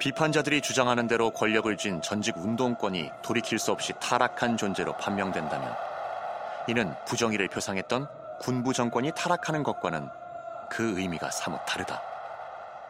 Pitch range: 105-175 Hz